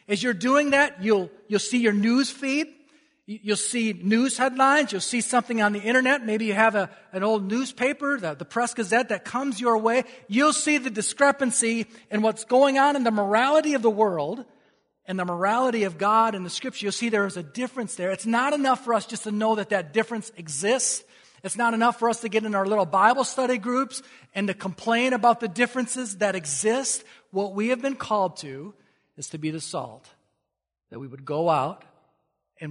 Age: 40-59